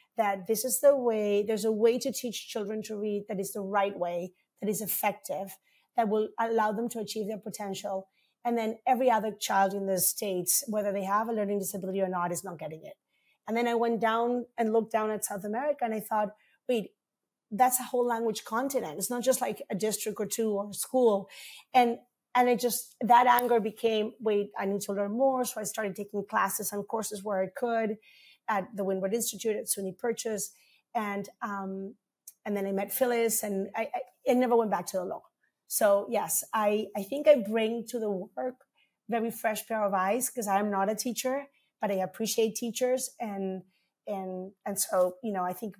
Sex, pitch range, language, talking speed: female, 195-235 Hz, English, 210 wpm